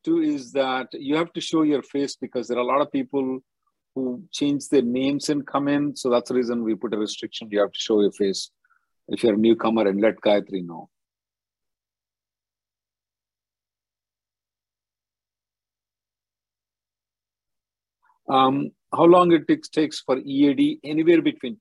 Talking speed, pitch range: 155 wpm, 110-150 Hz